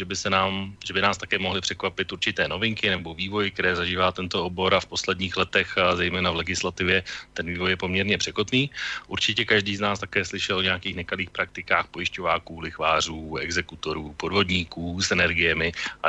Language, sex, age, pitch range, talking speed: Slovak, male, 30-49, 90-100 Hz, 175 wpm